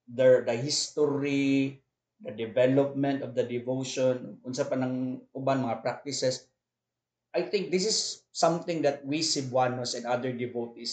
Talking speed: 135 wpm